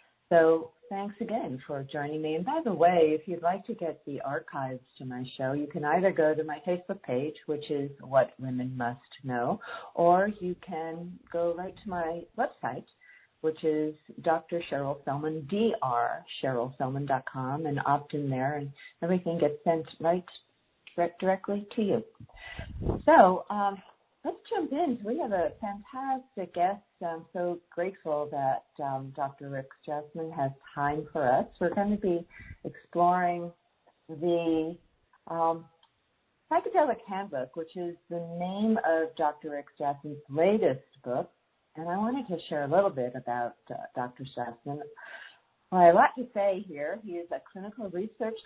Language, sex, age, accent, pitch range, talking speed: English, female, 50-69, American, 145-195 Hz, 155 wpm